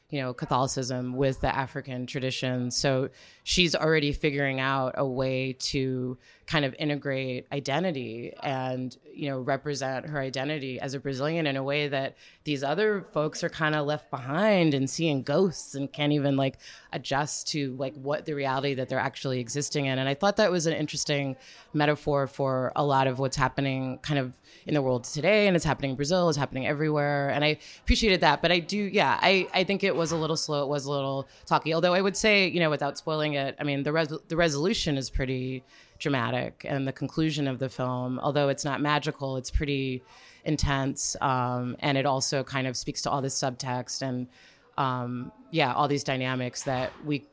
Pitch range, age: 130-150 Hz, 20-39